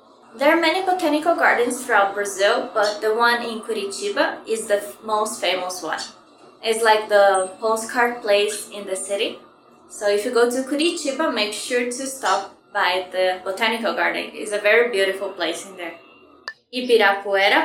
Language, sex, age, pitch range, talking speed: English, female, 20-39, 205-265 Hz, 160 wpm